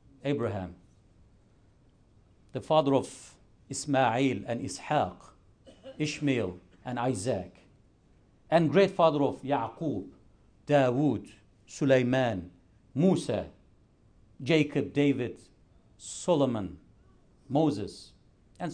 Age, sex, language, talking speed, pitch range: 50-69, male, English, 75 wpm, 110-175 Hz